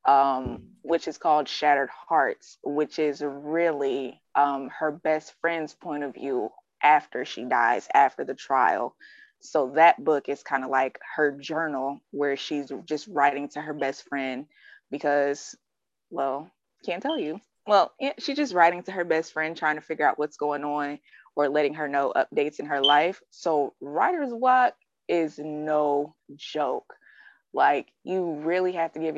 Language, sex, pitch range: English, female, 145-175 Hz